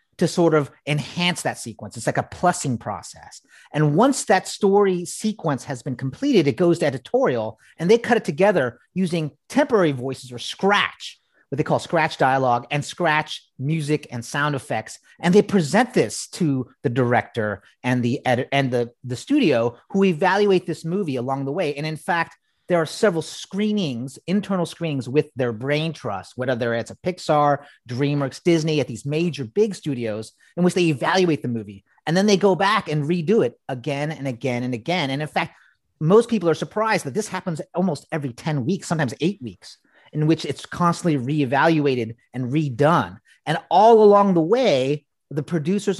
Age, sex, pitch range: 30-49, male, 130-180 Hz